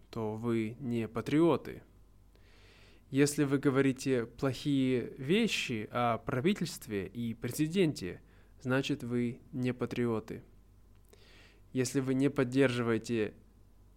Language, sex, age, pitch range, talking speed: Russian, male, 20-39, 115-145 Hz, 90 wpm